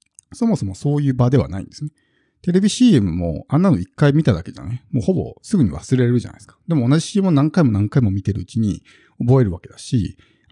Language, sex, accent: Japanese, male, native